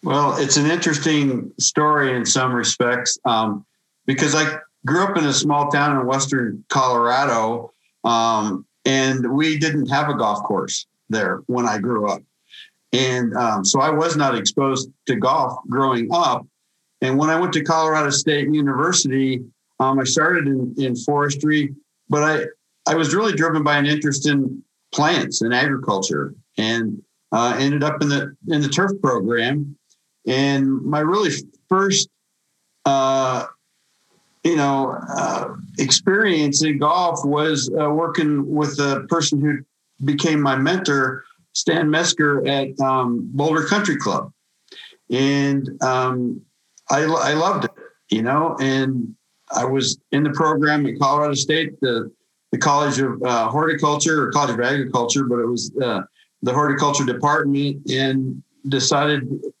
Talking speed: 145 wpm